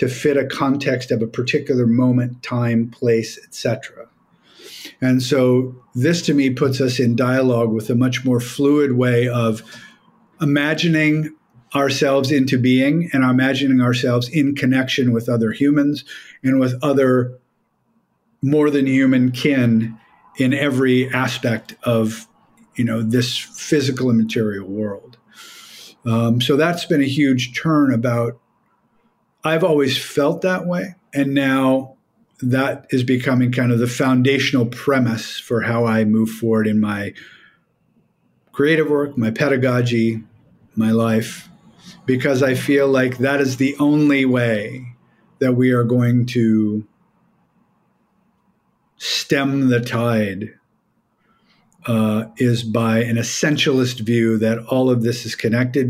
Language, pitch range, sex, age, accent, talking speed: English, 120-140 Hz, male, 50-69, American, 130 wpm